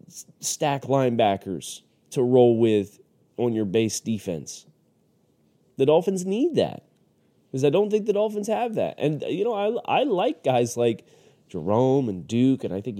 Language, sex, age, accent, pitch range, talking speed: English, male, 30-49, American, 105-150 Hz, 160 wpm